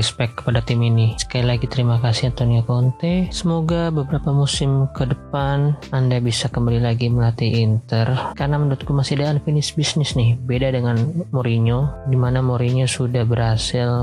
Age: 20-39